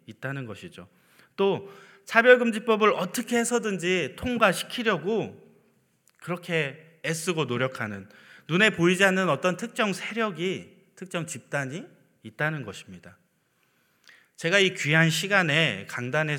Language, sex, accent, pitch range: Korean, male, native, 125-180 Hz